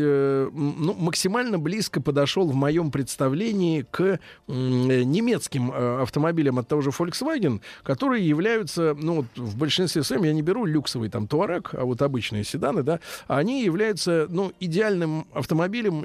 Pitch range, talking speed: 135-185 Hz, 125 wpm